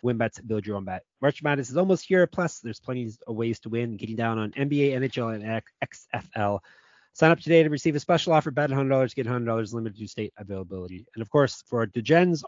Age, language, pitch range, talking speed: 30-49, English, 115-150 Hz, 225 wpm